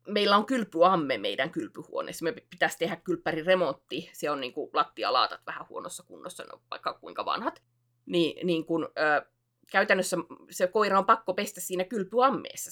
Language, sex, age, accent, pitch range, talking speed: Finnish, female, 20-39, native, 160-230 Hz, 150 wpm